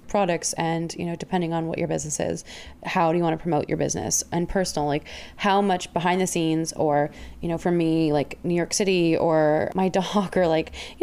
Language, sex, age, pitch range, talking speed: English, female, 20-39, 160-190 Hz, 225 wpm